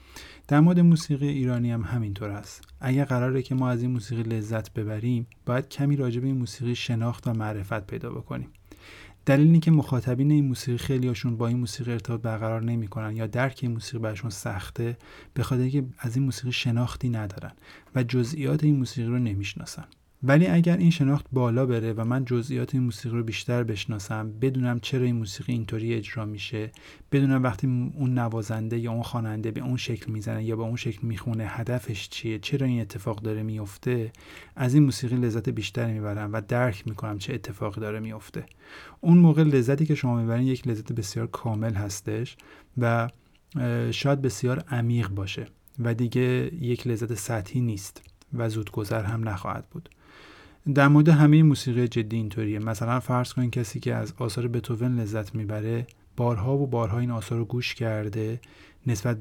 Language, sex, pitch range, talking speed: Persian, male, 110-130 Hz, 165 wpm